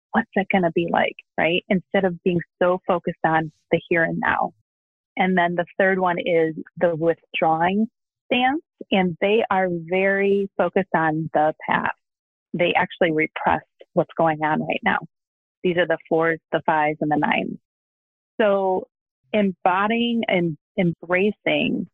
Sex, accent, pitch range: female, American, 165-195 Hz